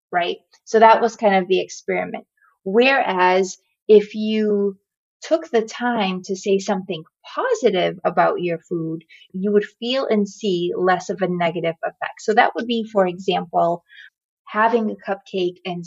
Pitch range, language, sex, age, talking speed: 185-225 Hz, English, female, 20-39, 155 wpm